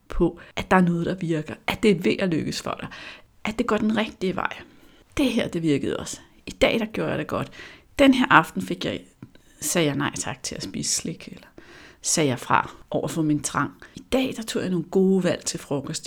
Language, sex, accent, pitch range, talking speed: Danish, female, native, 170-230 Hz, 235 wpm